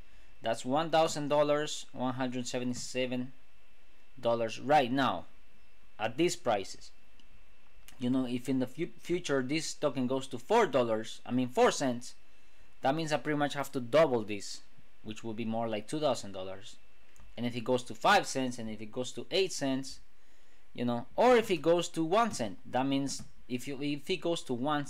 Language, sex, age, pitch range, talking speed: English, male, 20-39, 115-145 Hz, 190 wpm